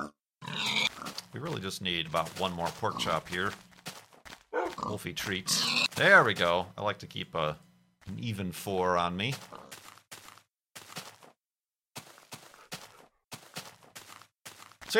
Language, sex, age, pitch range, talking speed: English, male, 40-59, 90-140 Hz, 105 wpm